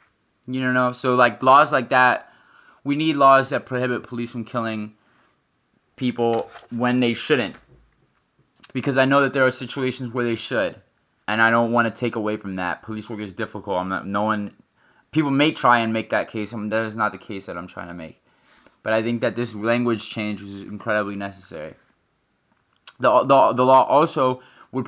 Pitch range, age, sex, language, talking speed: 115-135 Hz, 20-39, male, English, 190 wpm